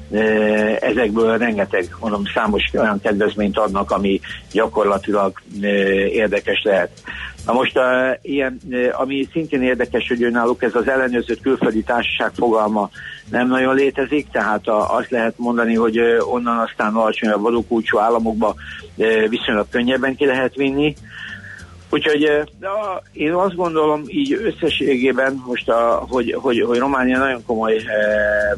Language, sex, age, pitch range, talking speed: Hungarian, male, 60-79, 110-130 Hz, 120 wpm